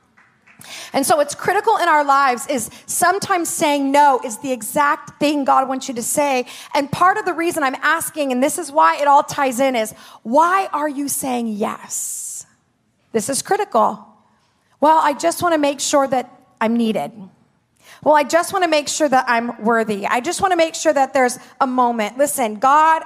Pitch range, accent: 230-300 Hz, American